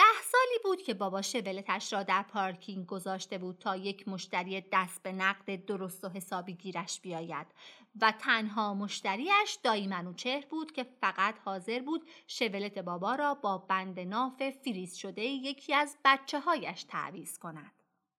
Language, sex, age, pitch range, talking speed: Persian, female, 30-49, 195-290 Hz, 150 wpm